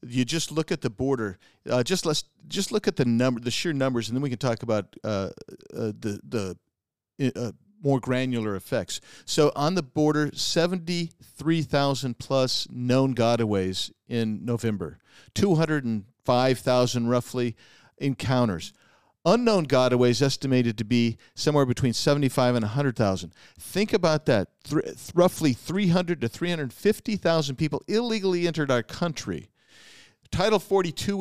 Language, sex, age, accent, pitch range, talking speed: English, male, 50-69, American, 120-160 Hz, 135 wpm